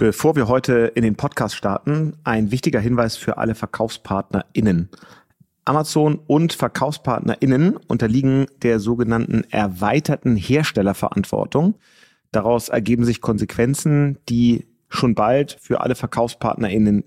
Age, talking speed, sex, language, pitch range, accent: 30-49, 110 wpm, male, German, 115-145 Hz, German